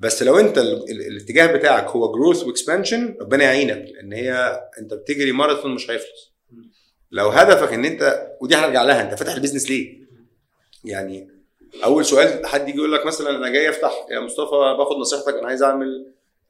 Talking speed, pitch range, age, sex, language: 165 wpm, 130-190 Hz, 30-49, male, Arabic